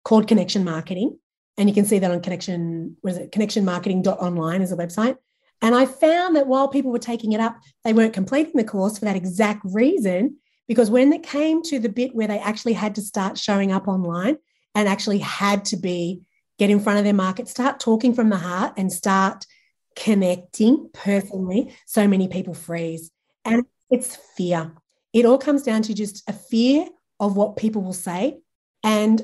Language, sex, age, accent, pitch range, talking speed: English, female, 30-49, Australian, 190-240 Hz, 190 wpm